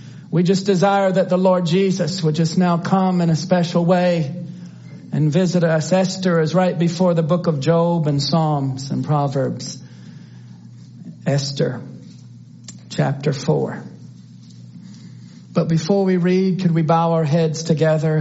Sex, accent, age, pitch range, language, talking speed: male, American, 50-69, 160-225 Hz, English, 140 wpm